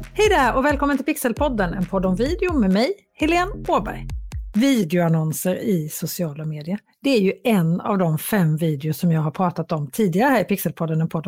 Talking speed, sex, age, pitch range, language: 195 wpm, female, 40-59, 170-250 Hz, Swedish